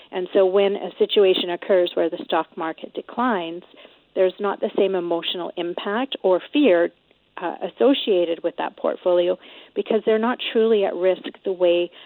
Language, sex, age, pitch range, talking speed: English, female, 40-59, 180-220 Hz, 160 wpm